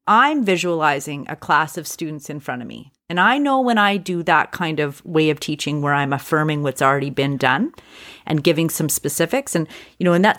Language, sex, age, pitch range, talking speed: English, female, 30-49, 160-215 Hz, 220 wpm